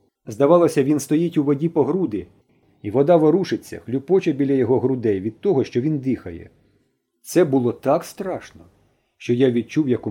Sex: male